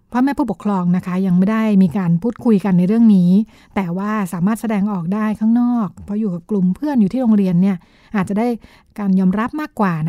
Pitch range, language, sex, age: 190-225 Hz, Thai, female, 60-79